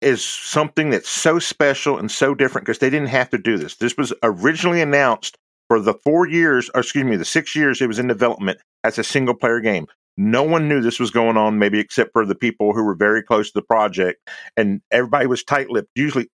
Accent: American